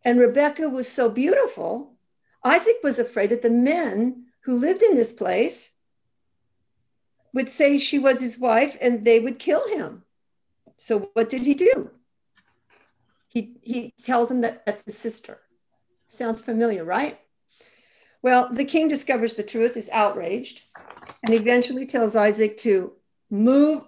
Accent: American